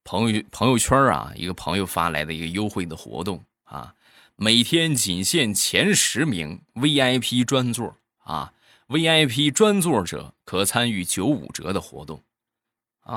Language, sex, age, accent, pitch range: Chinese, male, 20-39, native, 95-130 Hz